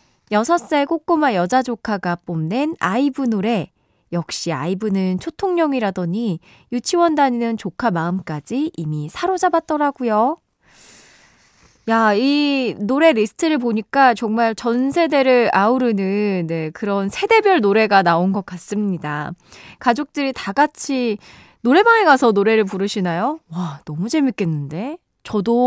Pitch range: 190-275 Hz